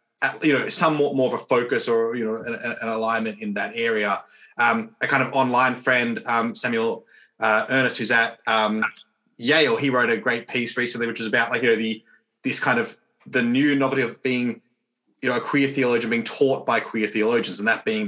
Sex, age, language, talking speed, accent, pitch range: male, 20-39, English, 210 wpm, Australian, 115-140 Hz